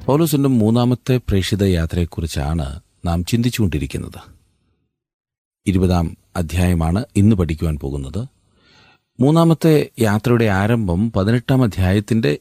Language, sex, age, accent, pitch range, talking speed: Malayalam, male, 40-59, native, 85-115 Hz, 75 wpm